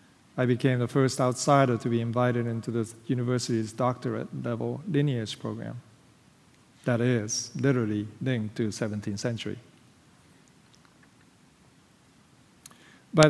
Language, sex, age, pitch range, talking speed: English, male, 50-69, 120-140 Hz, 105 wpm